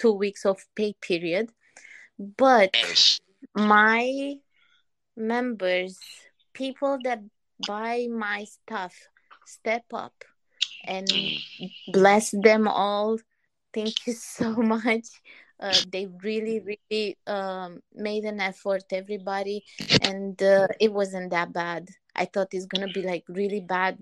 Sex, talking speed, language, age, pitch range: female, 115 wpm, English, 20-39, 200-230 Hz